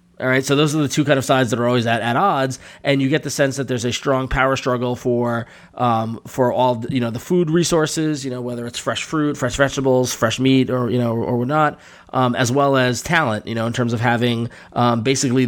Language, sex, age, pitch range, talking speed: English, male, 20-39, 120-135 Hz, 250 wpm